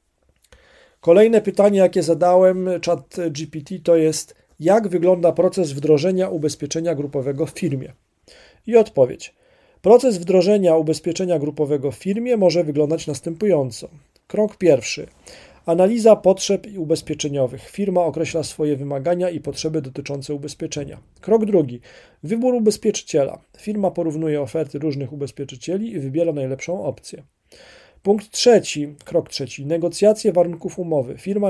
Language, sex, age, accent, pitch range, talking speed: Polish, male, 40-59, native, 145-195 Hz, 115 wpm